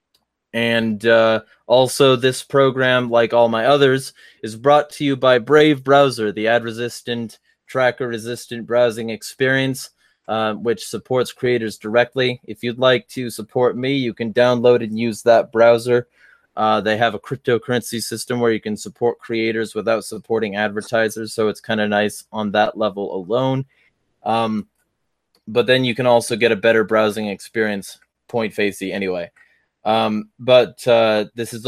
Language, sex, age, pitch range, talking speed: English, male, 20-39, 110-125 Hz, 150 wpm